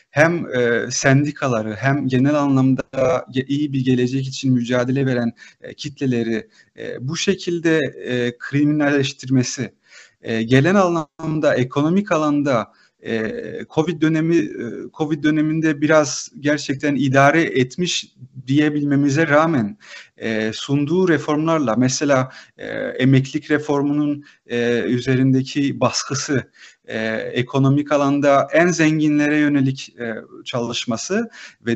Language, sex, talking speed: Turkish, male, 80 wpm